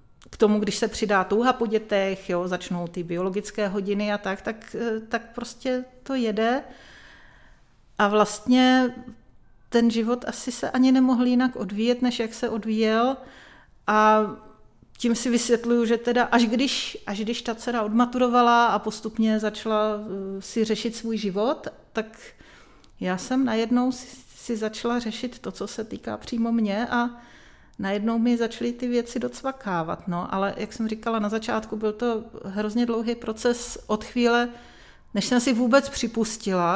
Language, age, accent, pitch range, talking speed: Czech, 40-59, native, 195-240 Hz, 155 wpm